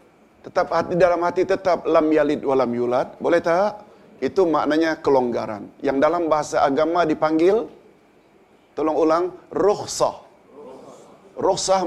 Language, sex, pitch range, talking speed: Malayalam, male, 150-185 Hz, 115 wpm